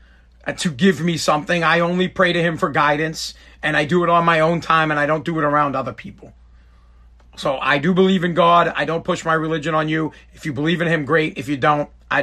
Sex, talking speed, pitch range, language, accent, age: male, 245 wpm, 130-165 Hz, English, American, 40-59